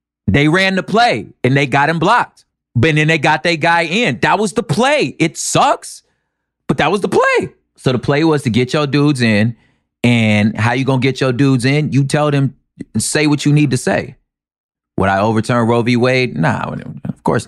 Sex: male